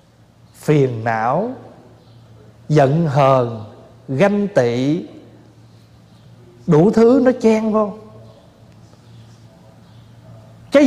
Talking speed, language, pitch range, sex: 65 wpm, Vietnamese, 120-185 Hz, male